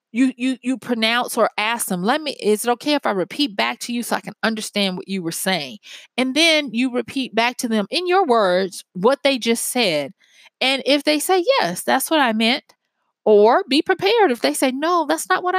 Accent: American